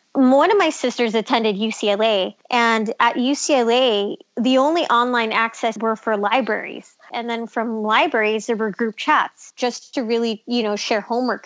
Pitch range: 215-260 Hz